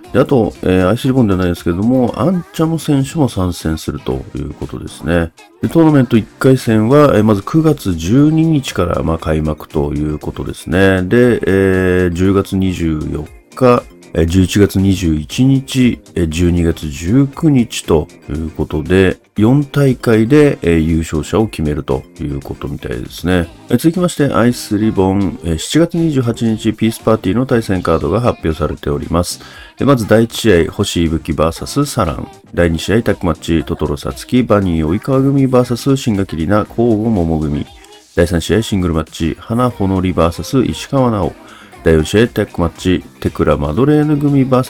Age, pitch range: 40-59, 85-125 Hz